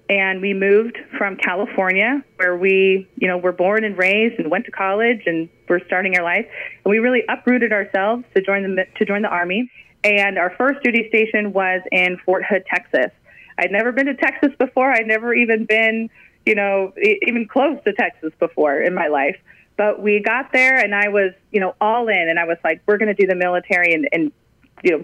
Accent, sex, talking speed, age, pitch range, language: American, female, 215 wpm, 30-49, 190-230 Hz, English